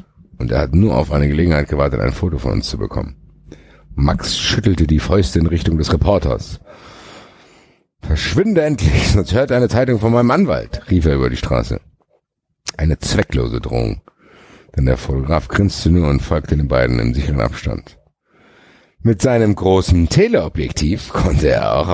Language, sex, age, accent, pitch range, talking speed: German, male, 50-69, German, 70-105 Hz, 160 wpm